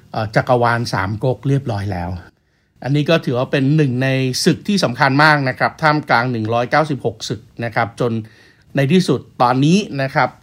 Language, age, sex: Thai, 60-79, male